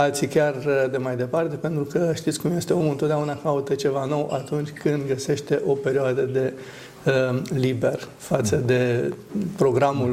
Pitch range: 130-155 Hz